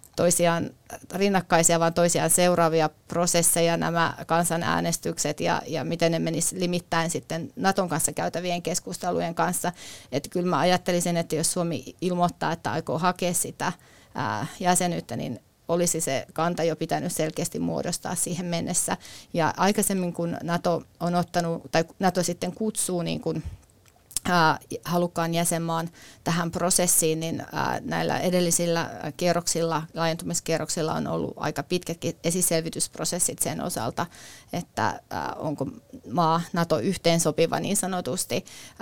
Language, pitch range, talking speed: Finnish, 165-180 Hz, 120 wpm